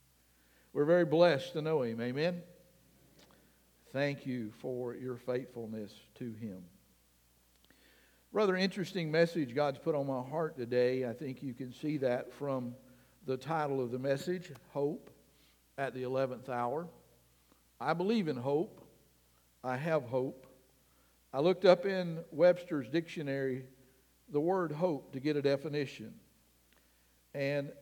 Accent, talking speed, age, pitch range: American, 130 wpm, 60-79, 120-170 Hz